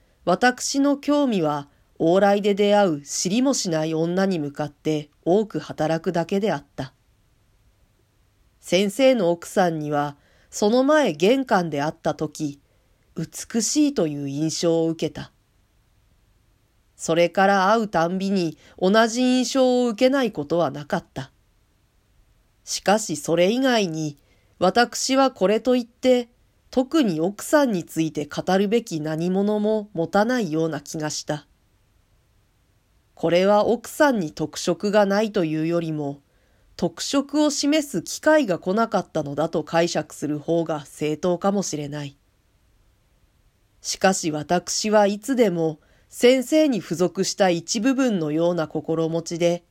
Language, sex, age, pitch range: Japanese, female, 40-59, 140-205 Hz